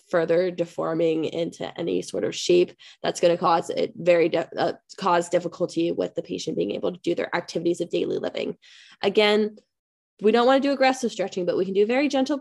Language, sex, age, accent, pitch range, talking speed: English, female, 10-29, American, 180-230 Hz, 210 wpm